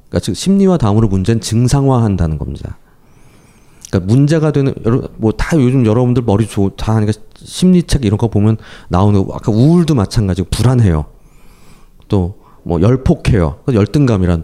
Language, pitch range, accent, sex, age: Korean, 95-140 Hz, native, male, 30-49